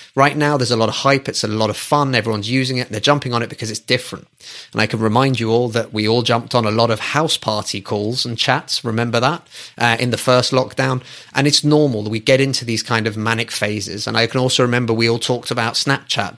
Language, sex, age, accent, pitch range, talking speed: English, male, 30-49, British, 110-135 Hz, 255 wpm